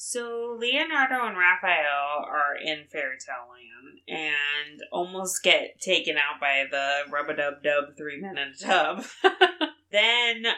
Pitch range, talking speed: 140-170 Hz, 125 wpm